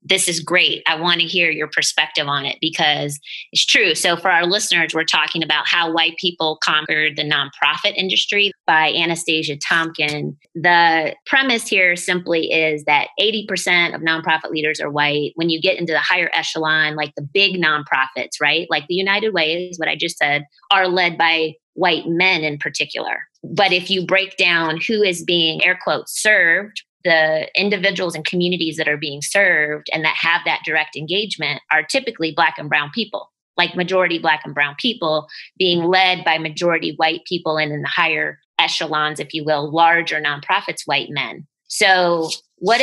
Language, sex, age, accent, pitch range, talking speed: English, female, 20-39, American, 155-190 Hz, 180 wpm